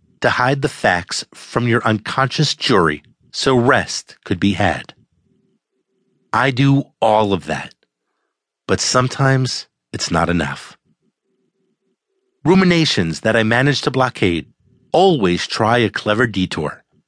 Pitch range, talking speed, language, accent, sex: 100-145 Hz, 120 wpm, English, American, male